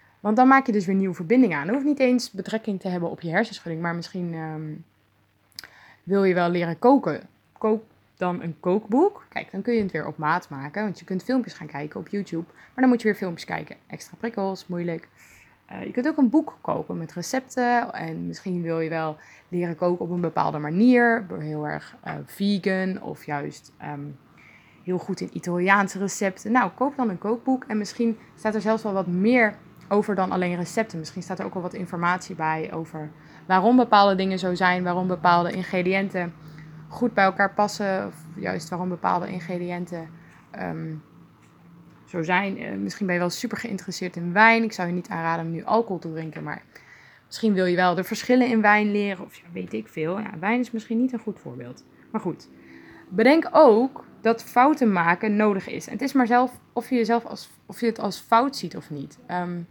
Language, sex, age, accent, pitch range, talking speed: Dutch, female, 20-39, Dutch, 170-220 Hz, 205 wpm